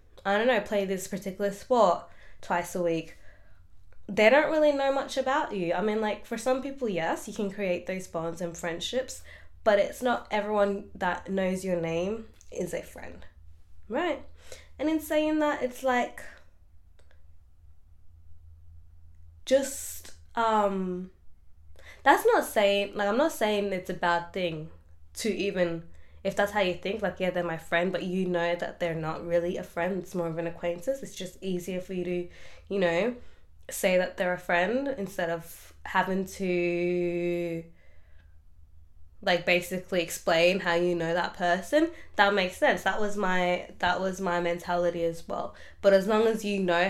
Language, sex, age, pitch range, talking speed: English, female, 20-39, 165-200 Hz, 170 wpm